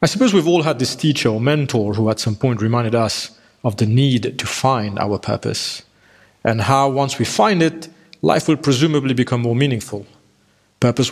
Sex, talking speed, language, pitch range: male, 190 wpm, English, 110-150 Hz